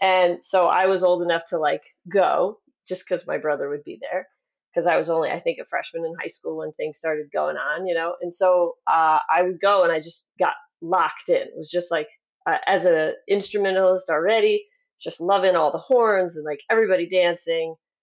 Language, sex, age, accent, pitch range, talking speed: English, female, 30-49, American, 175-235 Hz, 215 wpm